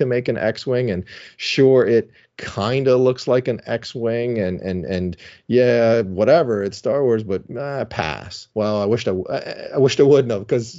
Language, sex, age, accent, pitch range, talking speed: English, male, 30-49, American, 95-125 Hz, 190 wpm